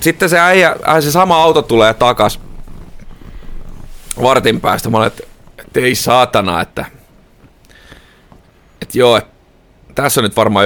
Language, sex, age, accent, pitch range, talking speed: Finnish, male, 30-49, native, 110-140 Hz, 135 wpm